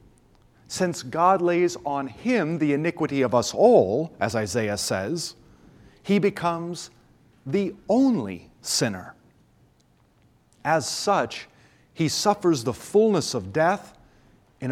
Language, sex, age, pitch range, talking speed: English, male, 40-59, 120-170 Hz, 110 wpm